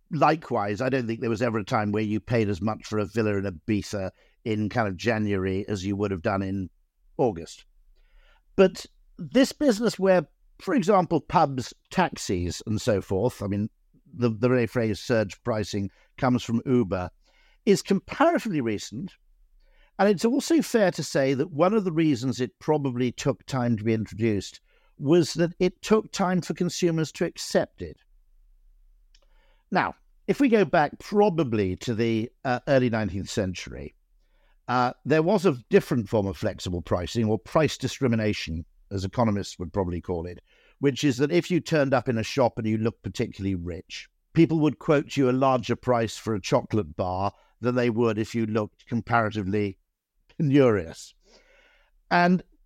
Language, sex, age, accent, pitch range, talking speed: English, male, 60-79, British, 105-155 Hz, 170 wpm